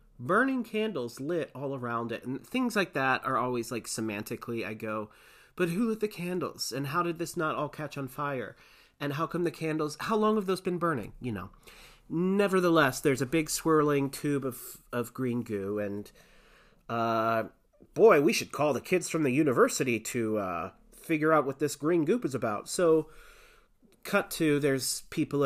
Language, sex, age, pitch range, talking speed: English, male, 30-49, 115-160 Hz, 185 wpm